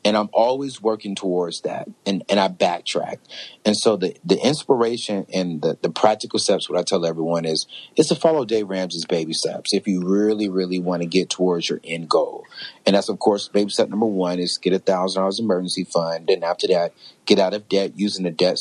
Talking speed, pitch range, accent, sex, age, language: 220 wpm, 90-115 Hz, American, male, 30-49, English